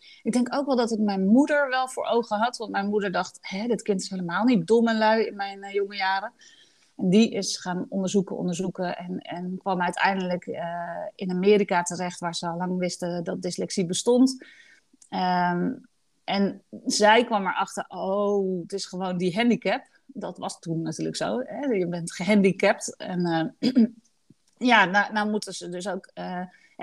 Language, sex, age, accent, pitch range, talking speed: Dutch, female, 40-59, Dutch, 185-230 Hz, 180 wpm